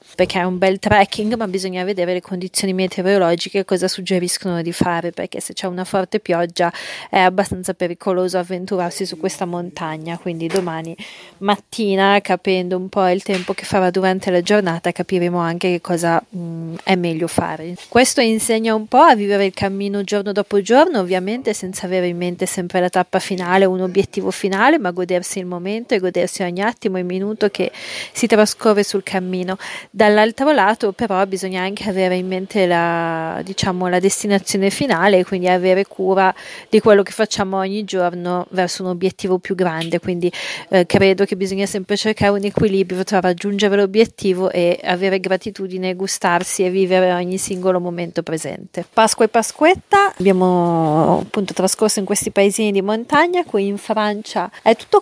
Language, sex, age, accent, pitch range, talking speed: Italian, female, 30-49, native, 180-205 Hz, 165 wpm